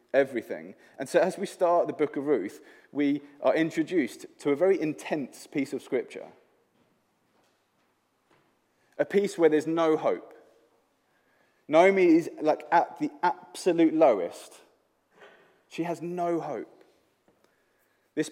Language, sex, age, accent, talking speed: English, male, 20-39, British, 125 wpm